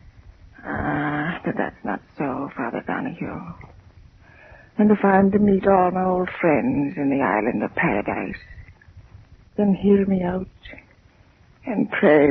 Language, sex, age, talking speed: English, female, 60-79, 130 wpm